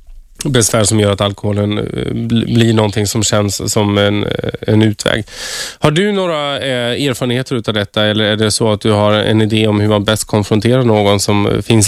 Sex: male